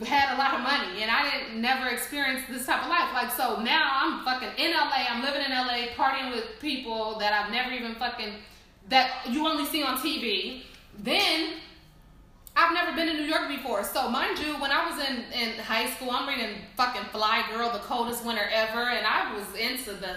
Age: 20-39